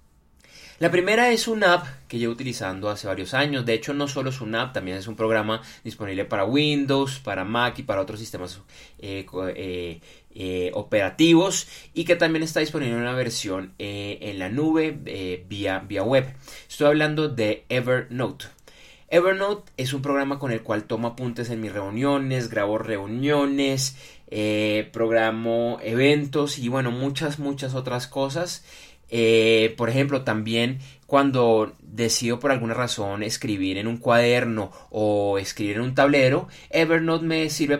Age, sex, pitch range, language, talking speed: 20-39, male, 110-145 Hz, Spanish, 155 wpm